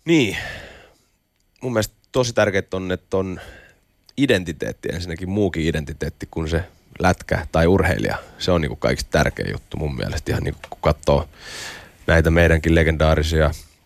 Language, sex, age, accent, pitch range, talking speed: Finnish, male, 30-49, native, 80-95 Hz, 140 wpm